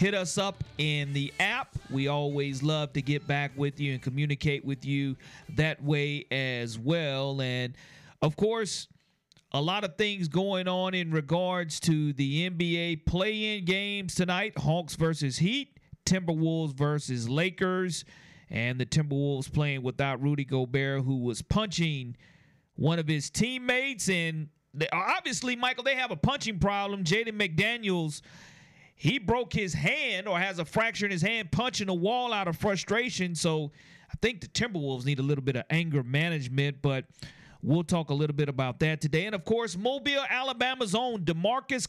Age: 40-59